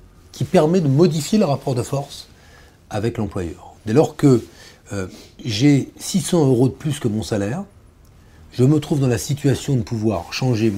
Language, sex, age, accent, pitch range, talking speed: French, male, 40-59, French, 95-140 Hz, 175 wpm